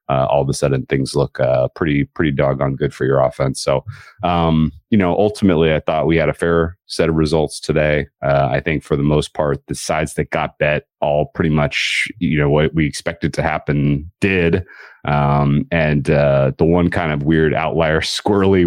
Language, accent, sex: English, American, male